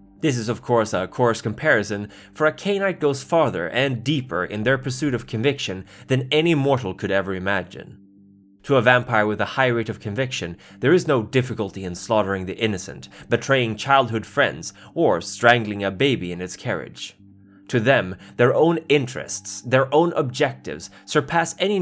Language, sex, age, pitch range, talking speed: English, male, 20-39, 100-145 Hz, 170 wpm